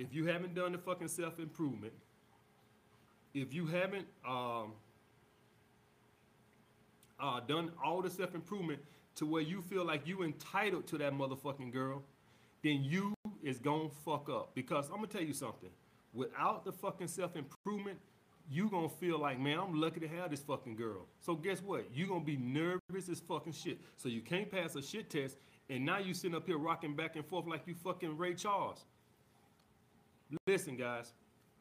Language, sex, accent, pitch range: English, male, American, 135-175 Hz